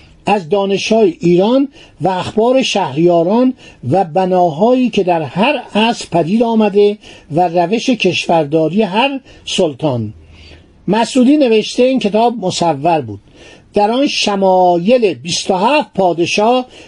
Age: 60-79